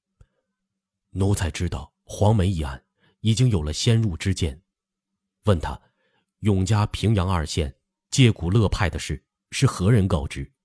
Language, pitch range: Chinese, 85-110 Hz